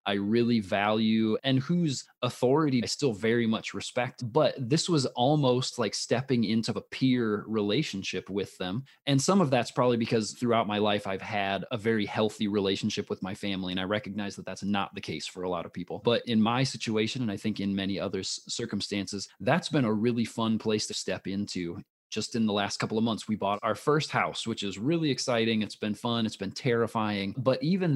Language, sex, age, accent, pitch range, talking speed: English, male, 20-39, American, 100-125 Hz, 210 wpm